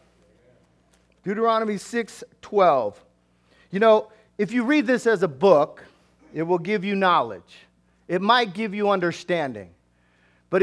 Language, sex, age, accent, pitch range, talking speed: English, male, 40-59, American, 140-225 Hz, 130 wpm